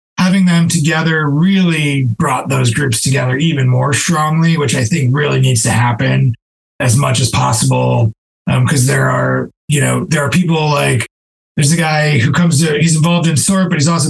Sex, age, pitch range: male, 30-49, 135-175 Hz